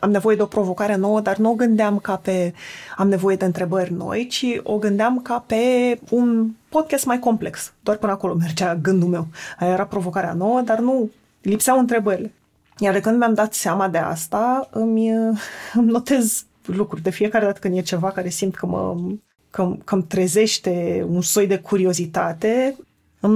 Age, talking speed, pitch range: 20-39, 180 wpm, 180-220 Hz